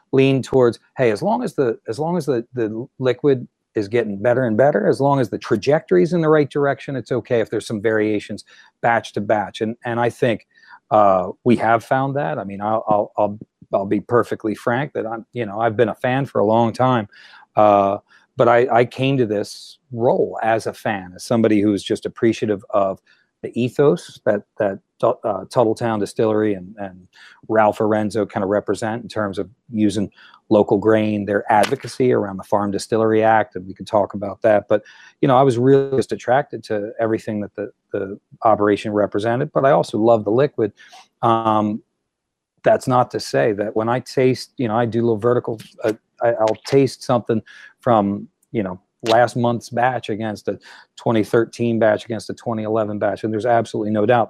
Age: 40-59